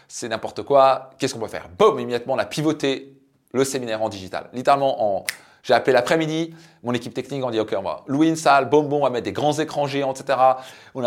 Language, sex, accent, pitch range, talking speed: French, male, French, 120-150 Hz, 235 wpm